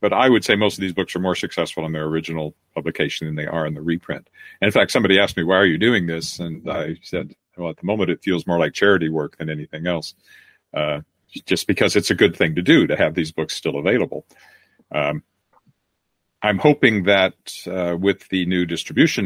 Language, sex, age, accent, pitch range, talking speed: English, male, 50-69, American, 80-95 Hz, 225 wpm